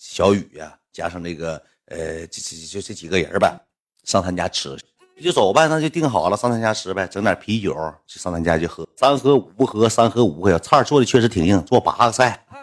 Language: Chinese